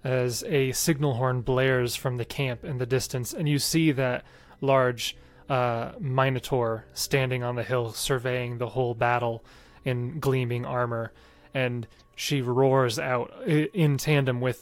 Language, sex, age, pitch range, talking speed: English, male, 30-49, 120-135 Hz, 150 wpm